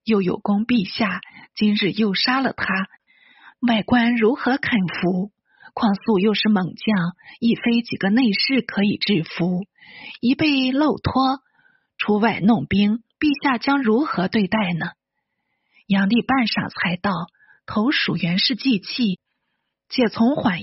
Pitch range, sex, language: 190-245 Hz, female, Chinese